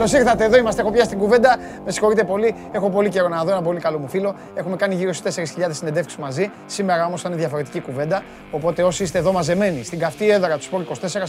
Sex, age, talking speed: male, 30-49, 195 wpm